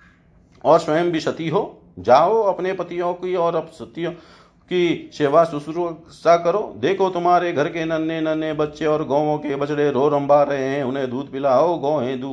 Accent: native